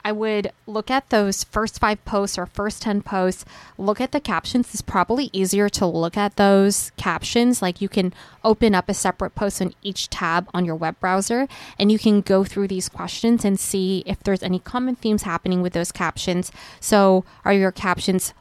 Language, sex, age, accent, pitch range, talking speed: English, female, 20-39, American, 185-220 Hz, 200 wpm